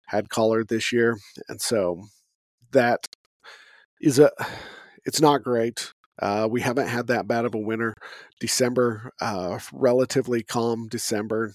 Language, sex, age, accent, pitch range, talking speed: English, male, 40-59, American, 105-125 Hz, 135 wpm